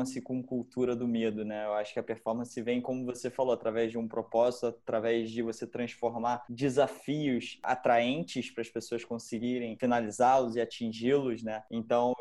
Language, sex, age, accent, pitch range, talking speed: Portuguese, male, 20-39, Brazilian, 115-135 Hz, 160 wpm